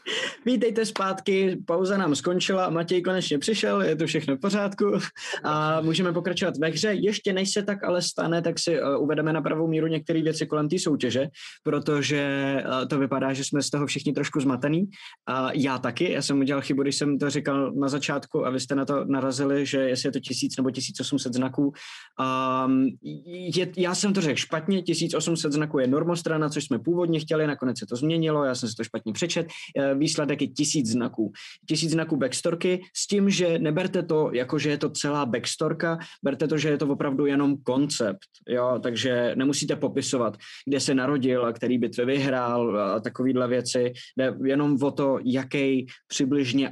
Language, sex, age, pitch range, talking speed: Czech, male, 20-39, 130-165 Hz, 180 wpm